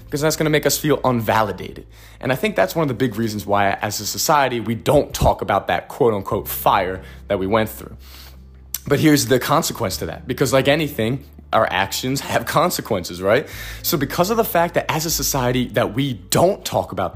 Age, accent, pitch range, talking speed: 20-39, American, 110-160 Hz, 205 wpm